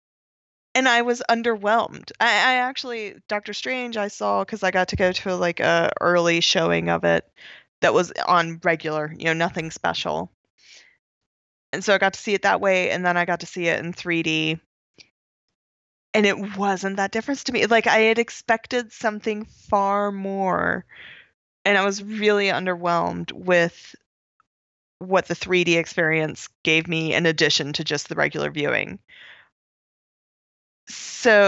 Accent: American